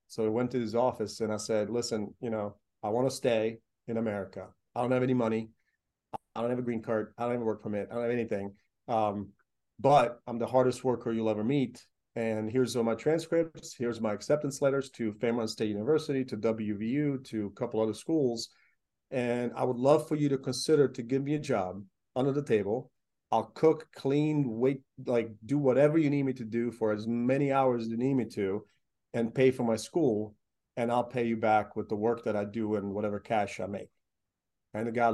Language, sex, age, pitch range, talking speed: English, male, 40-59, 110-130 Hz, 220 wpm